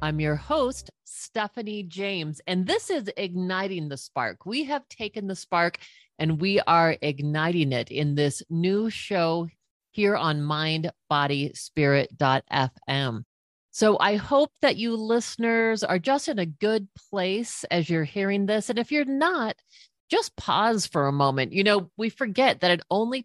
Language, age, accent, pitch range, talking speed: English, 40-59, American, 155-215 Hz, 155 wpm